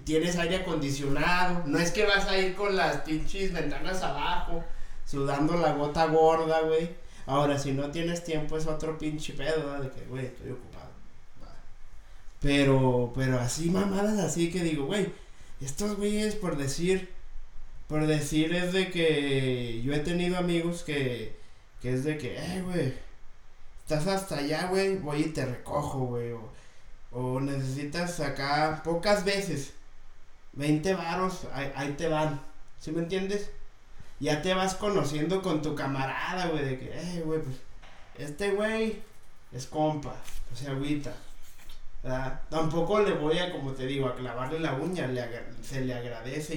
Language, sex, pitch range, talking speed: Spanish, male, 130-170 Hz, 160 wpm